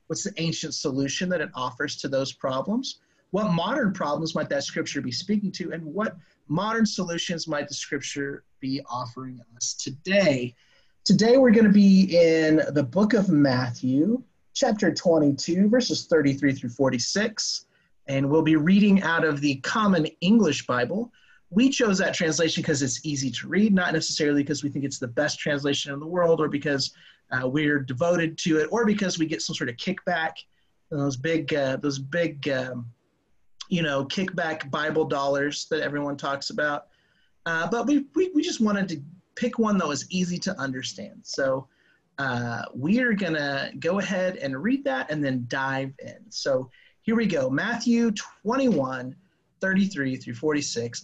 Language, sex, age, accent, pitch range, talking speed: English, male, 30-49, American, 140-195 Hz, 170 wpm